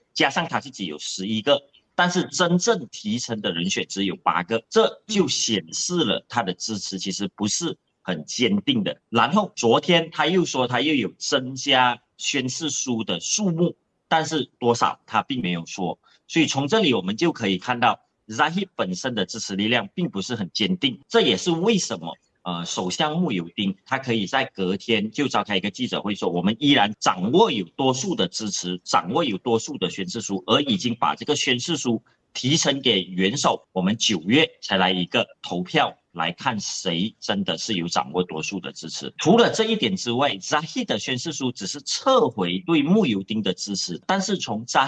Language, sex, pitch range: Chinese, male, 100-165 Hz